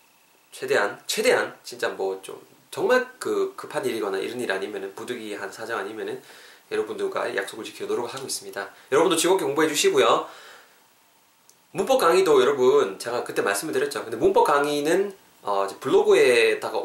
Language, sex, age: Korean, male, 20-39